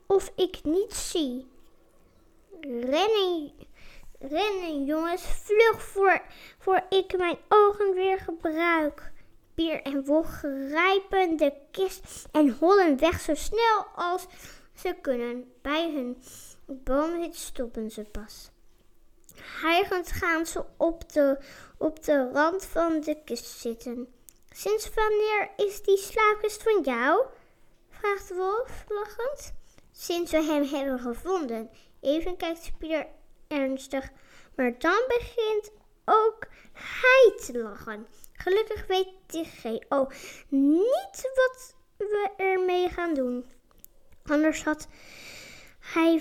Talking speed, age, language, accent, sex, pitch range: 115 wpm, 20-39, Dutch, Dutch, female, 285-390 Hz